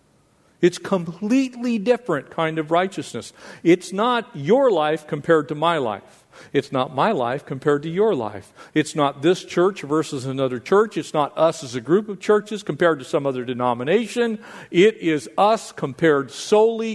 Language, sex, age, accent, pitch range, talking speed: English, male, 50-69, American, 135-195 Hz, 170 wpm